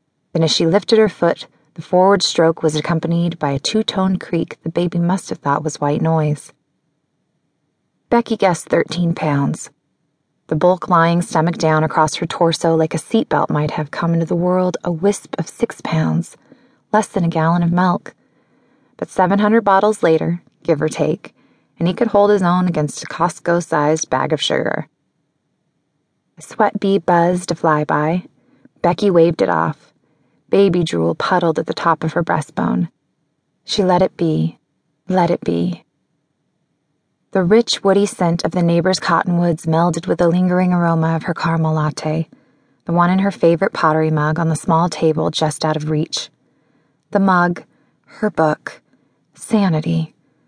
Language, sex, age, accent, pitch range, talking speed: English, female, 20-39, American, 155-185 Hz, 165 wpm